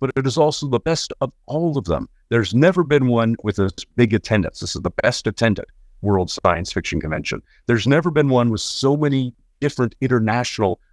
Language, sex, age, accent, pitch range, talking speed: English, male, 50-69, American, 95-135 Hz, 200 wpm